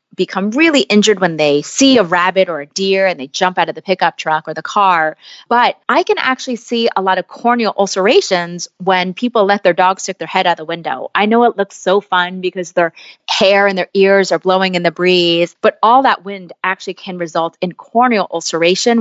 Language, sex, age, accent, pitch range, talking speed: English, female, 30-49, American, 175-215 Hz, 220 wpm